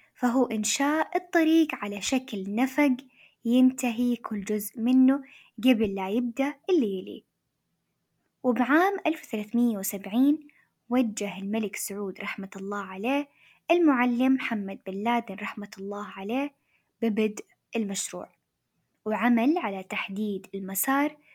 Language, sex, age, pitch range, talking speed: Arabic, female, 10-29, 210-270 Hz, 100 wpm